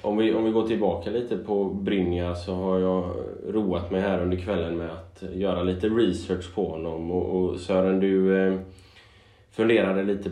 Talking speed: 180 wpm